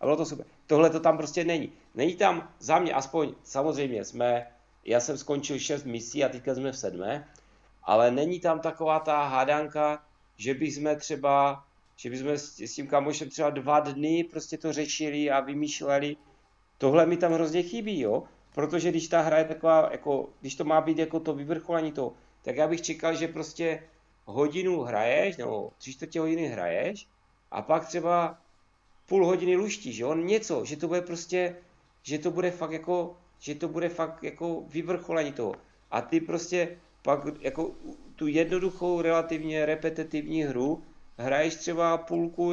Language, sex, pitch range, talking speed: Czech, male, 140-165 Hz, 165 wpm